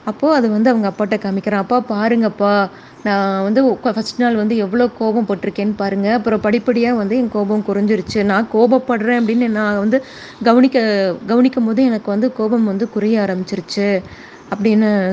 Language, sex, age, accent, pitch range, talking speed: Tamil, female, 20-39, native, 195-240 Hz, 150 wpm